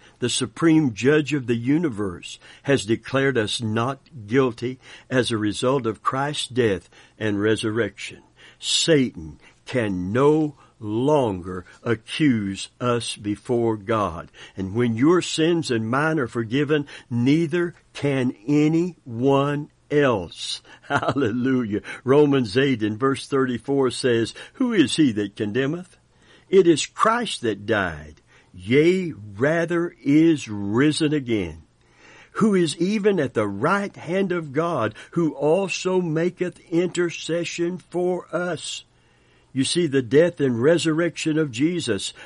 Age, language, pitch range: 60-79, English, 115-160 Hz